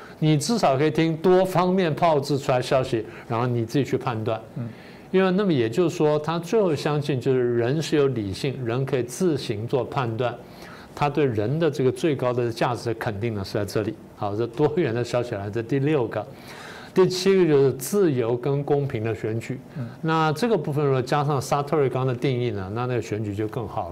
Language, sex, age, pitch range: Chinese, male, 50-69, 120-160 Hz